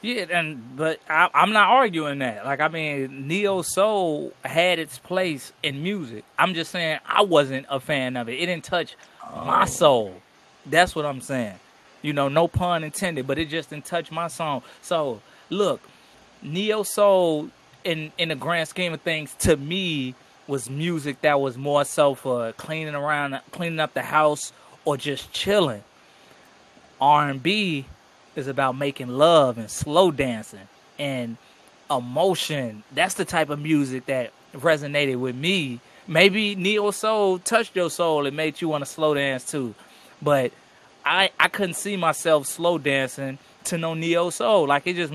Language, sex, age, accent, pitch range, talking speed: English, male, 20-39, American, 140-175 Hz, 170 wpm